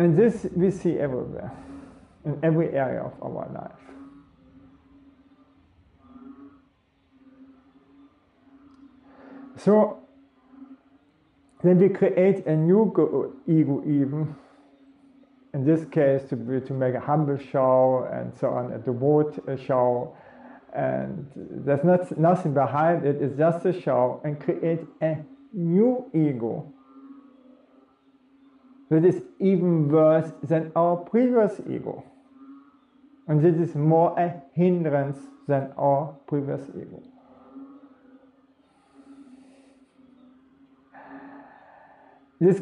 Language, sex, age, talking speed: English, male, 40-59, 100 wpm